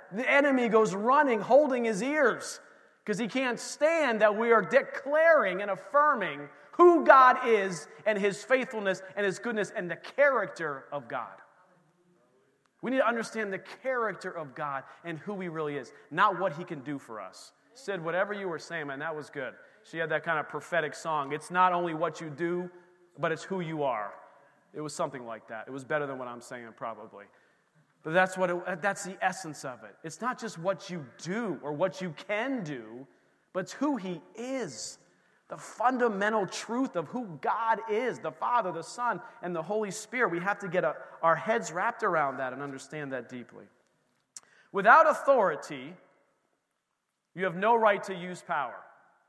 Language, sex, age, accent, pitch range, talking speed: English, male, 30-49, American, 165-230 Hz, 185 wpm